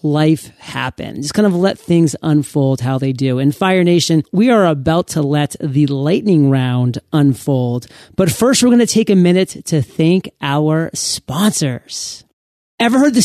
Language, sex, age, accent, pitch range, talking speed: English, male, 30-49, American, 150-195 Hz, 170 wpm